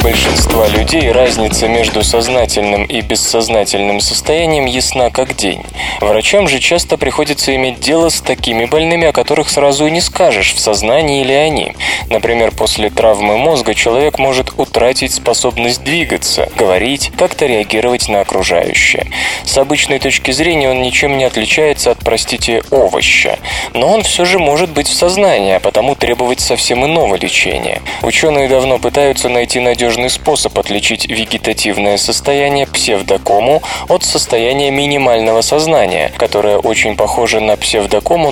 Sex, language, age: male, Russian, 20-39